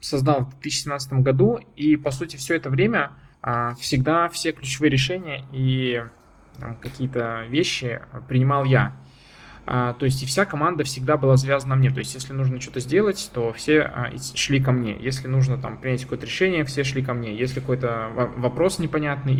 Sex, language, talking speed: male, Russian, 165 wpm